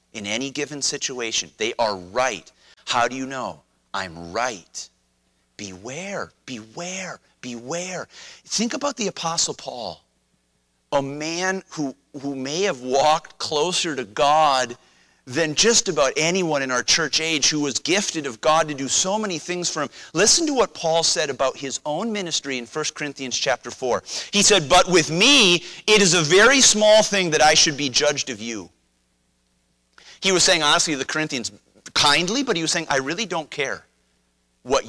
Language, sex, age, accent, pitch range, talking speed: English, male, 30-49, American, 120-190 Hz, 170 wpm